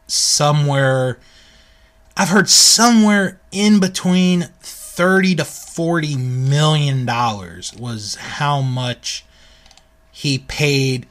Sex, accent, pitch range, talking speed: male, American, 120-150 Hz, 85 wpm